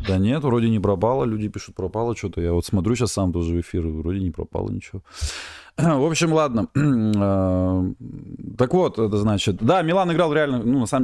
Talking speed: 190 wpm